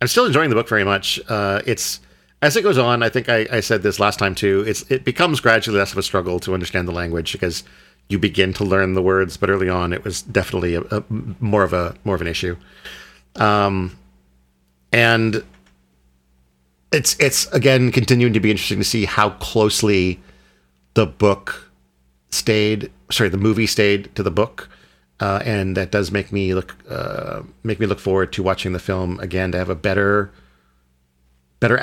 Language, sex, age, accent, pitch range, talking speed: English, male, 40-59, American, 65-110 Hz, 190 wpm